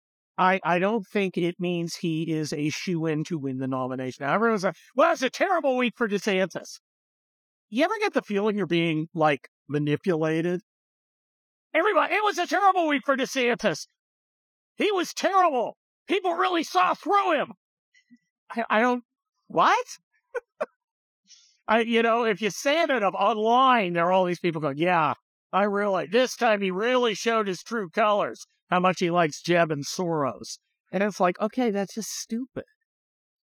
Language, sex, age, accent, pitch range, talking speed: English, male, 50-69, American, 150-230 Hz, 165 wpm